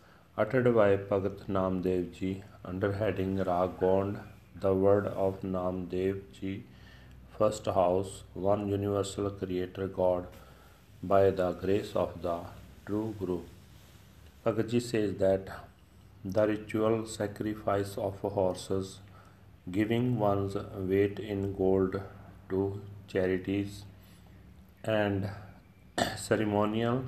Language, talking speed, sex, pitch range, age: Punjabi, 95 wpm, male, 95-105 Hz, 40-59